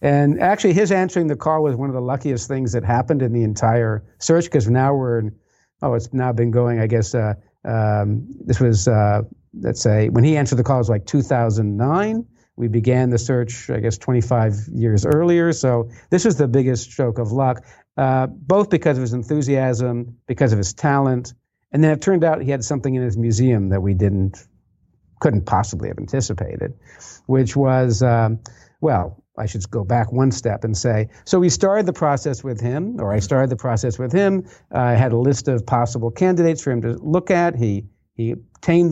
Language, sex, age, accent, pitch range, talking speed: English, male, 50-69, American, 115-155 Hz, 205 wpm